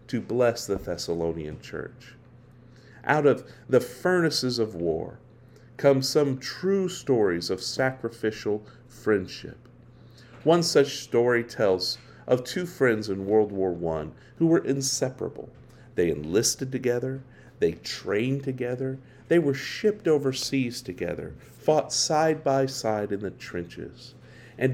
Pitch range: 115-135 Hz